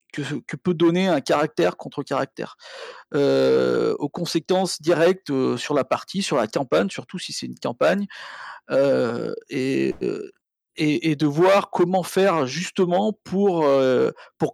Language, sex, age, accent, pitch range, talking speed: French, male, 40-59, French, 150-200 Hz, 135 wpm